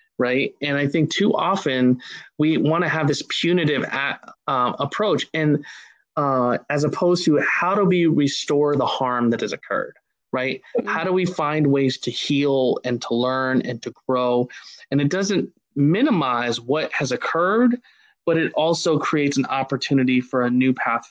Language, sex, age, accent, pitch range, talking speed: English, male, 20-39, American, 125-150 Hz, 170 wpm